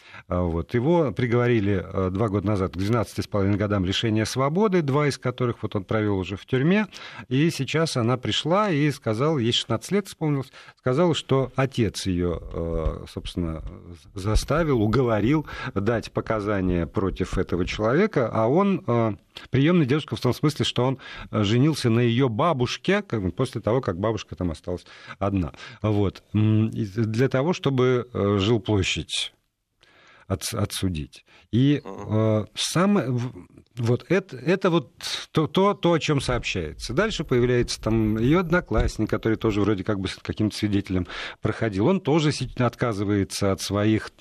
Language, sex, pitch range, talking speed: Russian, male, 105-145 Hz, 140 wpm